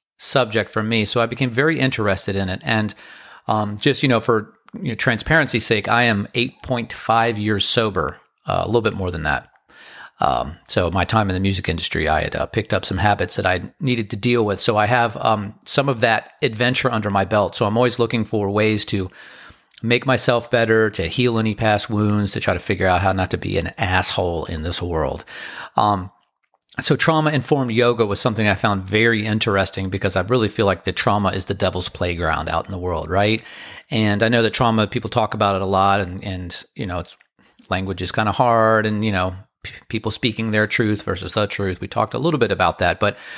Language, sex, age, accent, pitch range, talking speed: English, male, 40-59, American, 100-115 Hz, 220 wpm